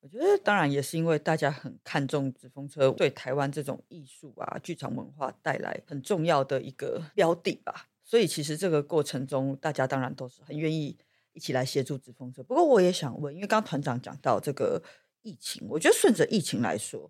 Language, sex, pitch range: Chinese, female, 140-205 Hz